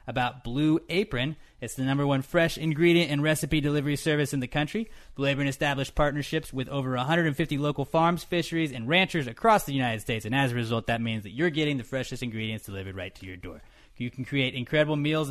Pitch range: 130-165 Hz